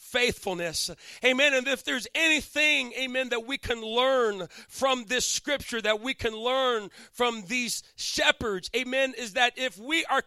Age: 40-59